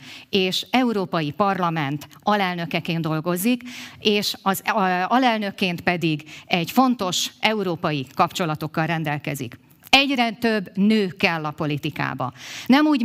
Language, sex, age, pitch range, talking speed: Hungarian, female, 50-69, 160-220 Hz, 100 wpm